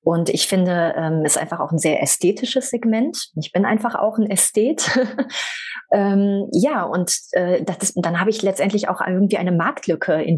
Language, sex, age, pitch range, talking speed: German, female, 30-49, 165-200 Hz, 190 wpm